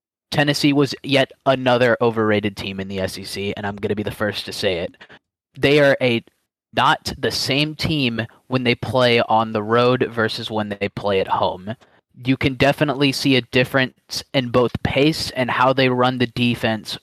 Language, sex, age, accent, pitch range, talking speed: English, male, 20-39, American, 115-150 Hz, 185 wpm